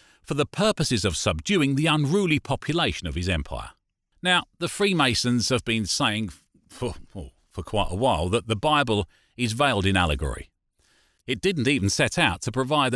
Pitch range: 105-160 Hz